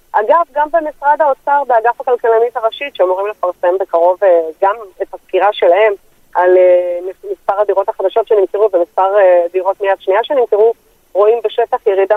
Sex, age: female, 30-49